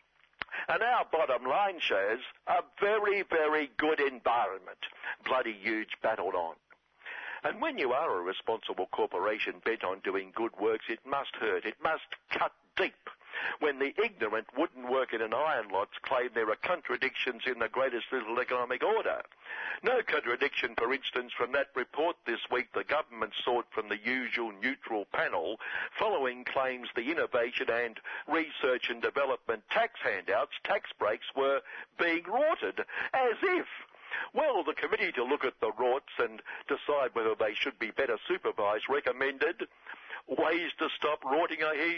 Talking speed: 155 wpm